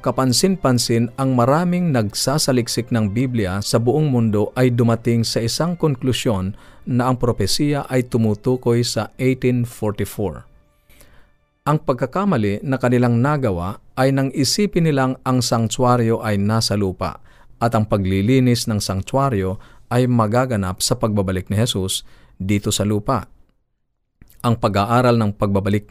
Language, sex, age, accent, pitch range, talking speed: Filipino, male, 50-69, native, 105-130 Hz, 125 wpm